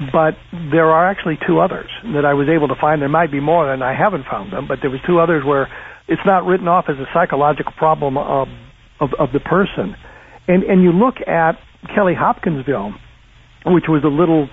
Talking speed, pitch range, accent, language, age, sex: 210 wpm, 135-170 Hz, American, English, 60-79, male